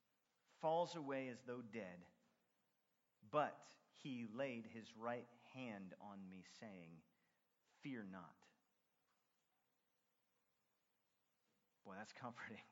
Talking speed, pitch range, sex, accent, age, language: 90 wpm, 105-125 Hz, male, American, 30-49, English